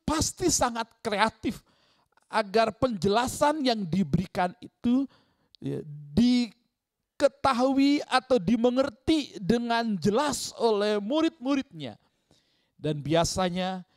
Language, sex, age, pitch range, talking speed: Indonesian, male, 50-69, 155-240 Hz, 75 wpm